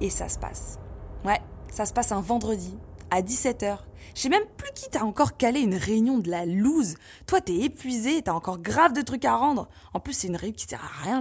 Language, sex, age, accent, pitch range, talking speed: French, female, 20-39, French, 180-270 Hz, 235 wpm